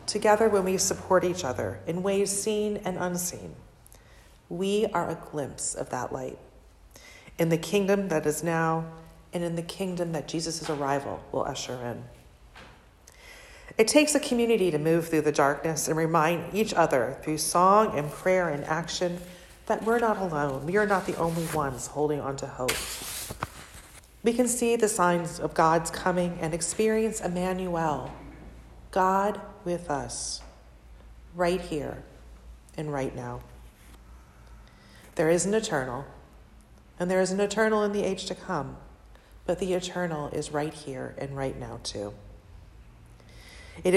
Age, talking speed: 40-59, 150 wpm